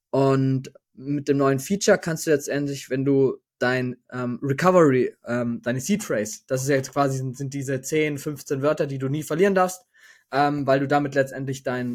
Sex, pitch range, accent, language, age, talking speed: male, 125-150 Hz, German, German, 20-39, 195 wpm